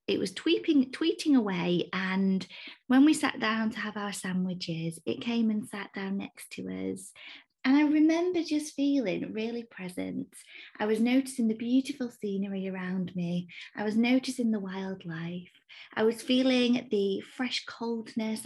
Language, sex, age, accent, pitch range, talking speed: English, female, 20-39, British, 195-255 Hz, 155 wpm